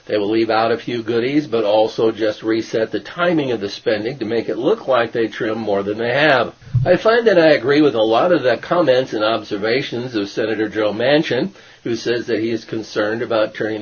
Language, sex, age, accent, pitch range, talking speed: English, male, 50-69, American, 110-140 Hz, 225 wpm